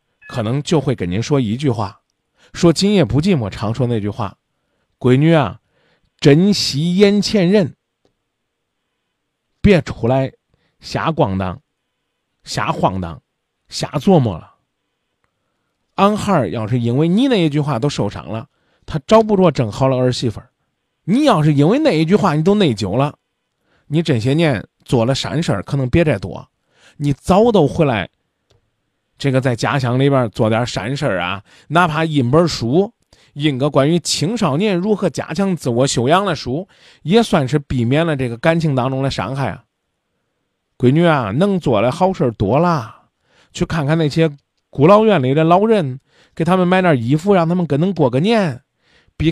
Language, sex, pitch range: Chinese, male, 125-180 Hz